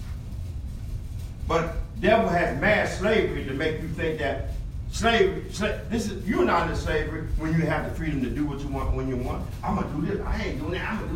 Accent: American